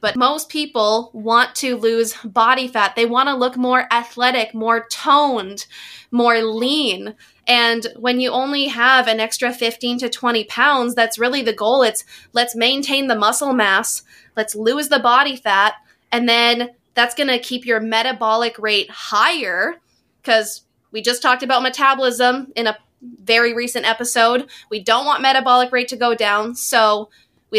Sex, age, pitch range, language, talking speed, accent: female, 20-39, 225-255 Hz, English, 165 wpm, American